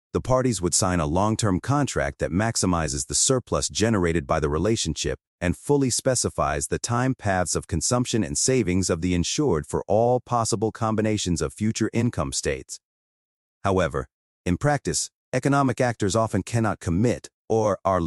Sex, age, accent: male, 40-59, American